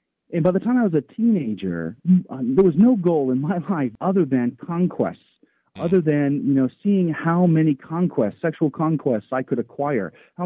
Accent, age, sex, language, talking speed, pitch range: American, 40-59, male, English, 190 wpm, 115-165 Hz